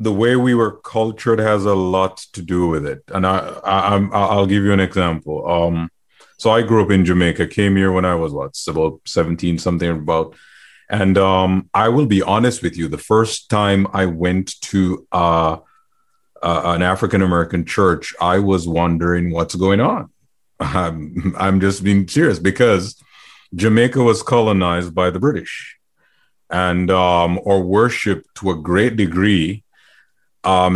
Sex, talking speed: male, 165 wpm